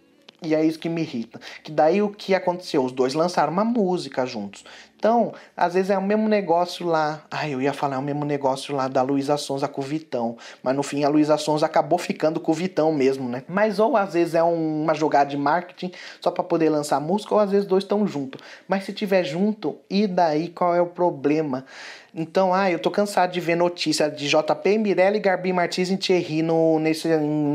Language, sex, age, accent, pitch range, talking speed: Portuguese, male, 20-39, Brazilian, 140-180 Hz, 220 wpm